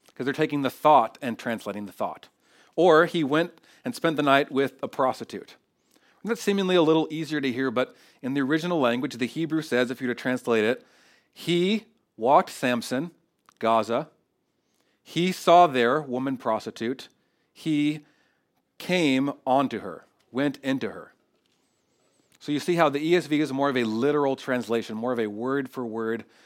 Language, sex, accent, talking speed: English, male, American, 165 wpm